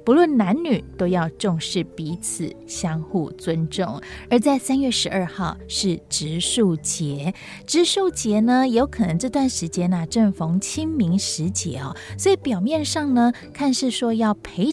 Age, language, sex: 30-49, Chinese, female